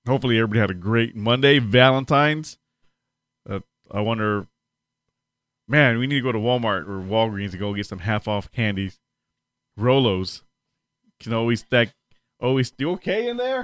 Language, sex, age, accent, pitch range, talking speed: English, male, 20-39, American, 100-125 Hz, 150 wpm